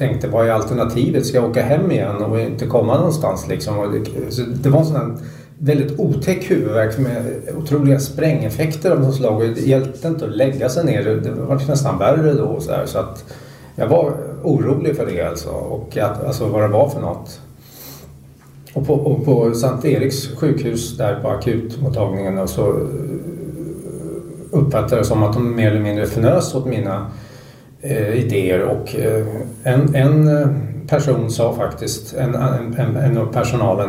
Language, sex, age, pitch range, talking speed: Swedish, male, 30-49, 115-145 Hz, 165 wpm